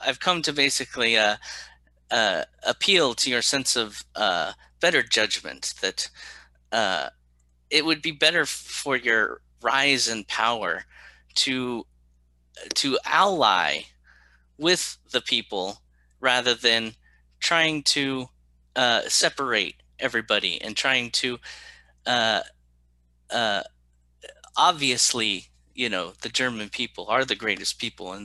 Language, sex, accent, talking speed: English, male, American, 115 wpm